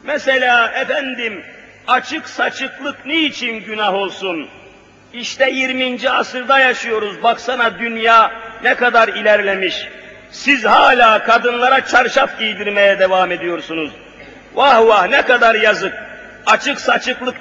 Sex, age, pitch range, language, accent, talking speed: male, 50-69, 190-260 Hz, Turkish, native, 105 wpm